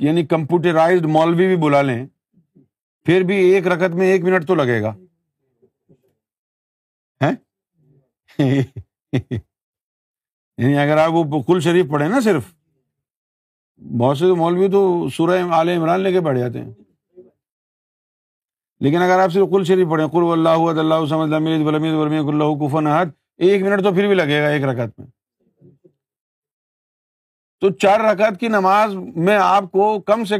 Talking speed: 135 wpm